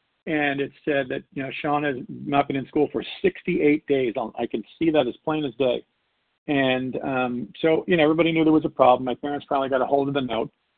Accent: American